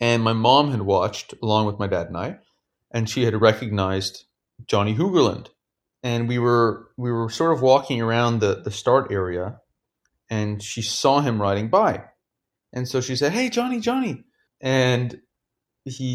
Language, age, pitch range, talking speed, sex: English, 30-49, 115-150 Hz, 165 wpm, male